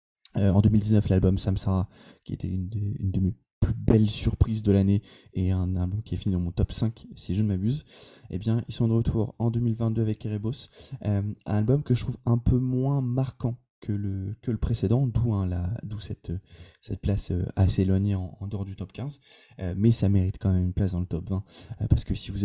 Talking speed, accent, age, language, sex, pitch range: 235 wpm, French, 20-39, French, male, 95-115 Hz